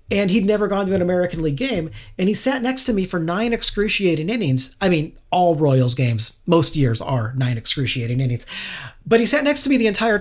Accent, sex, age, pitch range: American, male, 40-59, 150-220 Hz